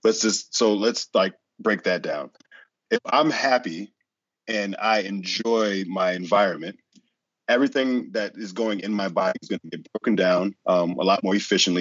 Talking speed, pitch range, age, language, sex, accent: 175 wpm, 95-120 Hz, 30-49, English, male, American